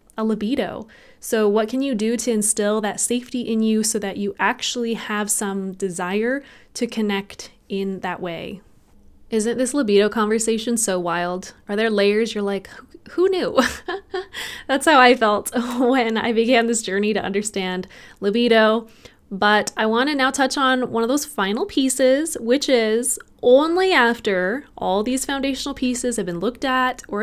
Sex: female